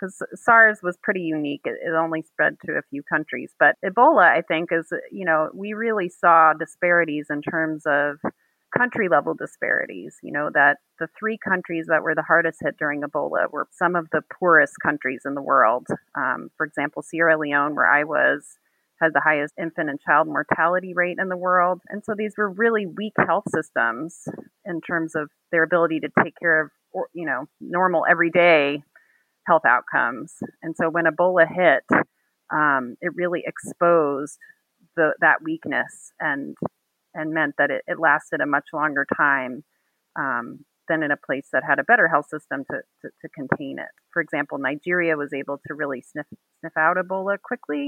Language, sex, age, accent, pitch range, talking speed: English, female, 30-49, American, 150-180 Hz, 180 wpm